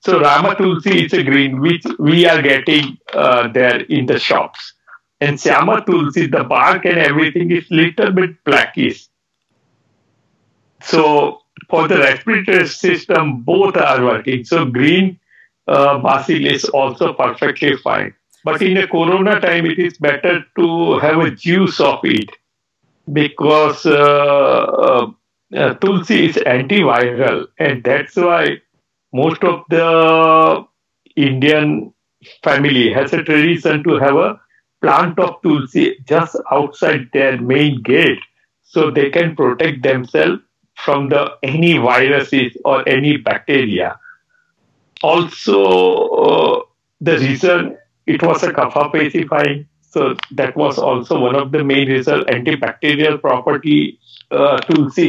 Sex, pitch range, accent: male, 140-175 Hz, Indian